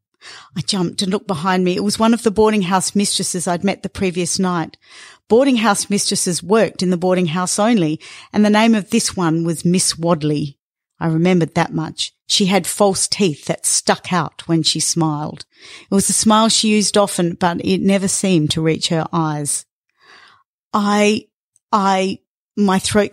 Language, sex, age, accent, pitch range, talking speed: English, female, 40-59, Australian, 165-205 Hz, 180 wpm